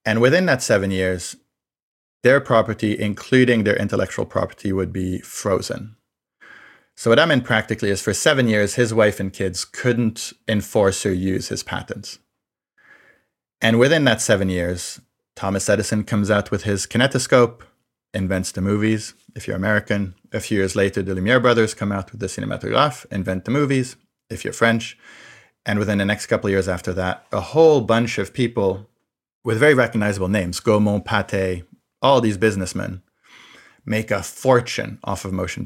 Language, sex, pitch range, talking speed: English, male, 95-115 Hz, 165 wpm